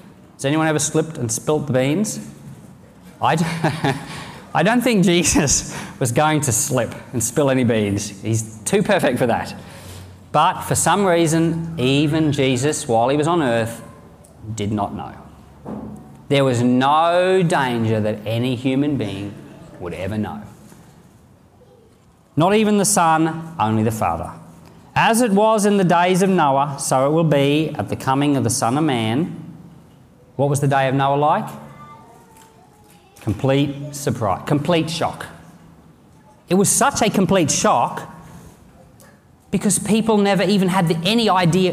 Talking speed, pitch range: 145 wpm, 115-170 Hz